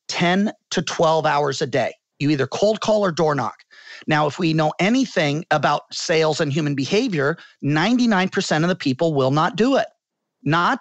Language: English